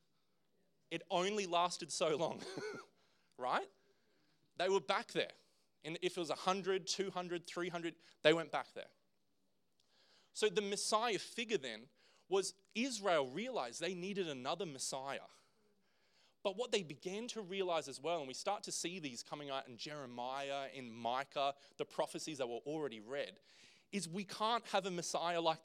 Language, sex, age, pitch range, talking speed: English, male, 20-39, 145-190 Hz, 155 wpm